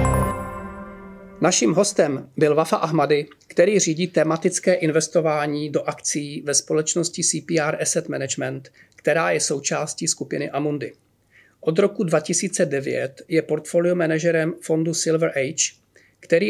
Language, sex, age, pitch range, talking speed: Czech, male, 40-59, 150-170 Hz, 115 wpm